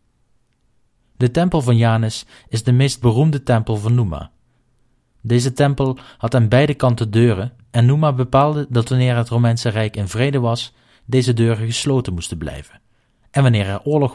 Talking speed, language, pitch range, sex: 160 wpm, Dutch, 110-130 Hz, male